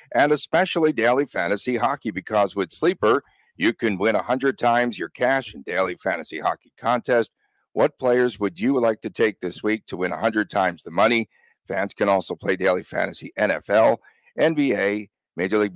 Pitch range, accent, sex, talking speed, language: 100-125 Hz, American, male, 170 wpm, English